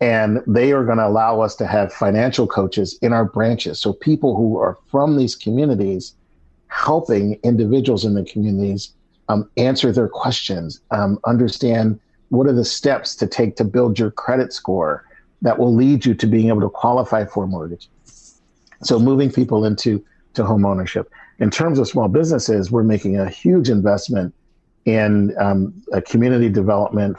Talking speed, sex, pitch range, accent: 170 wpm, male, 100-120 Hz, American